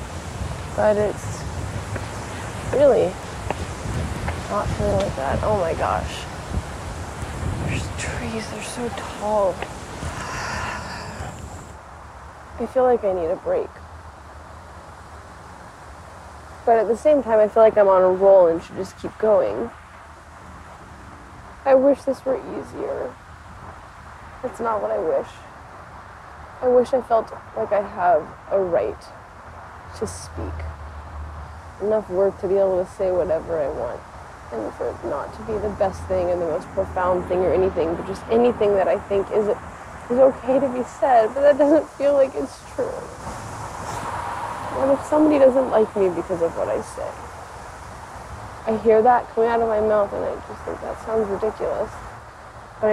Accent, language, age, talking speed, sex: American, English, 20-39, 150 wpm, female